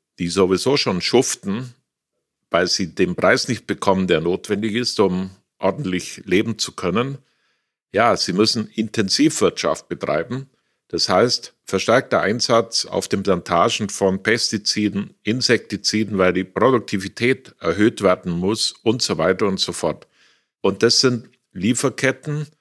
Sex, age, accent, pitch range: male, 50-69, German, 95-115 Hz